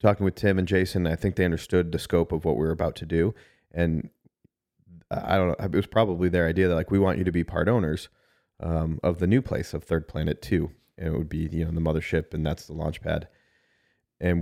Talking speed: 245 wpm